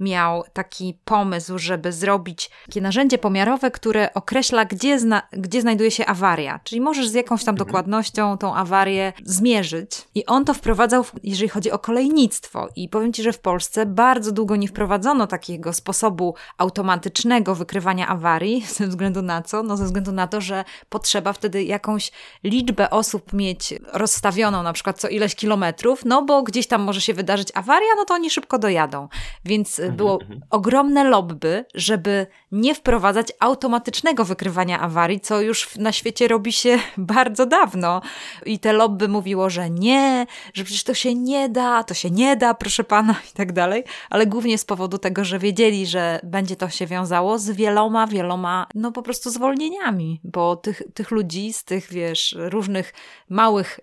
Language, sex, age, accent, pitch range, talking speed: Polish, female, 20-39, native, 185-230 Hz, 165 wpm